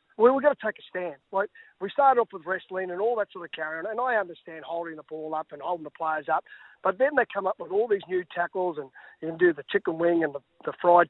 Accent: Australian